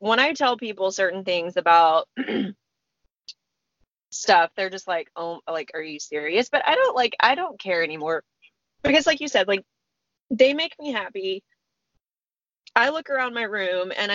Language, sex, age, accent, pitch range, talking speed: English, female, 20-39, American, 185-250 Hz, 165 wpm